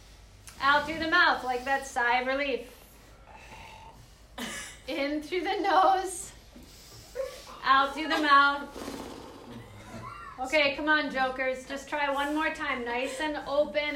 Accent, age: American, 30-49